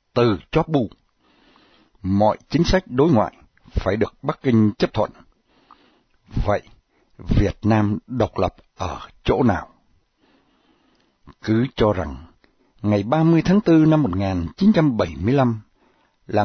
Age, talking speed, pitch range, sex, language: 60-79, 115 wpm, 95-135 Hz, male, Vietnamese